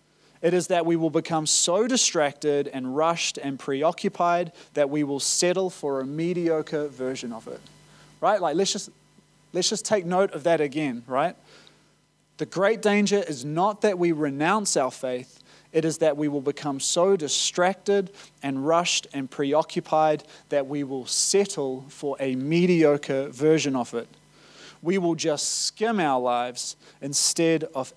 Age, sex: 30-49, male